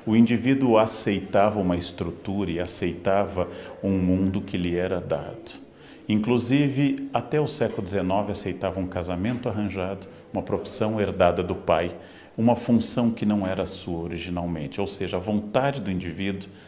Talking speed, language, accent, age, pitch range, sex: 145 wpm, Portuguese, Brazilian, 50-69, 95-115 Hz, male